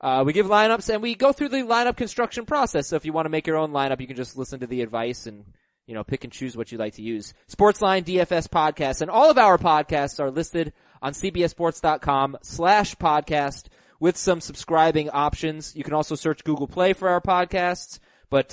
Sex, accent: male, American